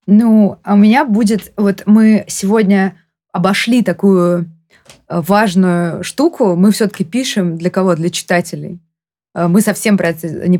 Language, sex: Russian, female